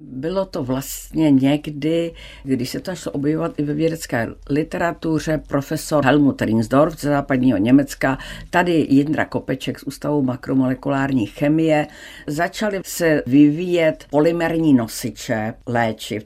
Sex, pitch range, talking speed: female, 130-165 Hz, 120 wpm